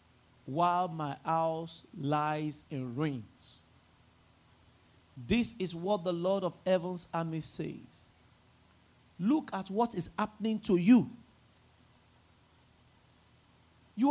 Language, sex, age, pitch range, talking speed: English, male, 50-69, 155-230 Hz, 100 wpm